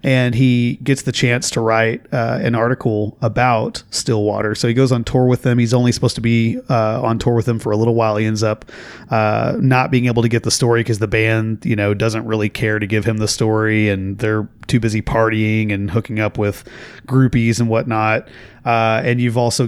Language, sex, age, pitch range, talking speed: English, male, 30-49, 110-125 Hz, 225 wpm